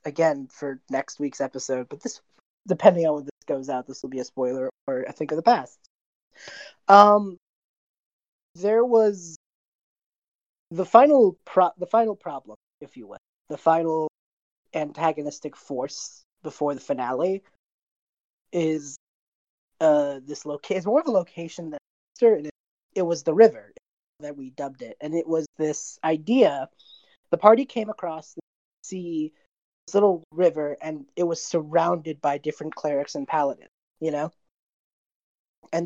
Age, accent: 30-49, American